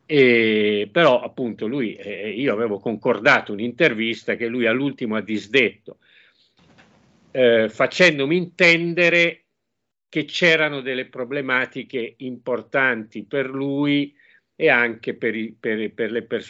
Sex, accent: male, native